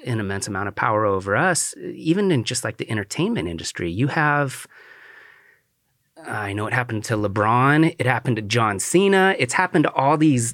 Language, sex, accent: English, male, American